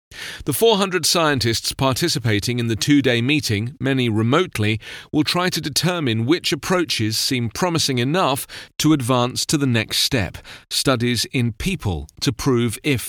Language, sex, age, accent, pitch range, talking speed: English, male, 40-59, British, 105-145 Hz, 140 wpm